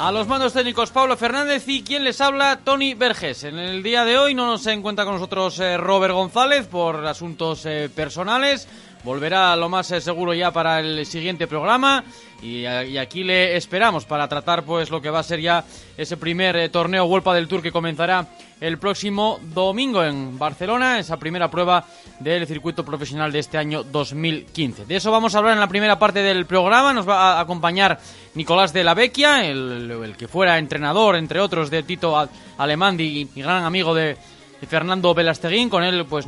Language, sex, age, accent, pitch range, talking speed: Spanish, male, 20-39, Spanish, 155-195 Hz, 185 wpm